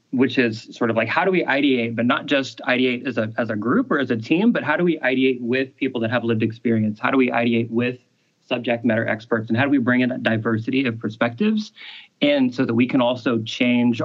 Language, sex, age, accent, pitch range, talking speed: English, male, 30-49, American, 115-130 Hz, 250 wpm